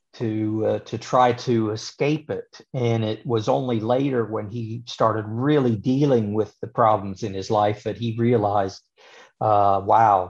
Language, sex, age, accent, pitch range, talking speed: English, male, 50-69, American, 105-120 Hz, 165 wpm